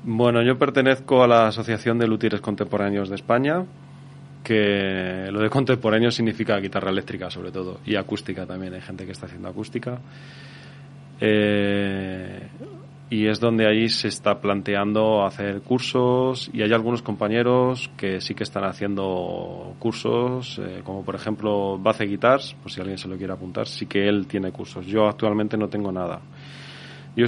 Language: Spanish